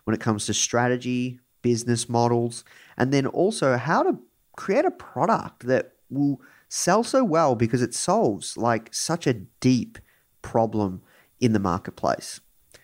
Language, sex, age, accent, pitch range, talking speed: English, male, 30-49, Australian, 110-140 Hz, 145 wpm